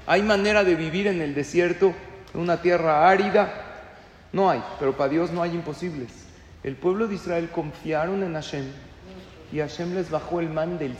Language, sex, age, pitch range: Spanish, male, 40-59, 165-205 Hz